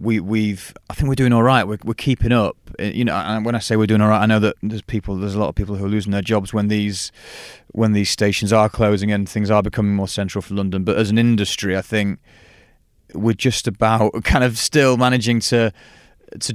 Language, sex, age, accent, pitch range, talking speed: English, male, 30-49, British, 100-115 Hz, 245 wpm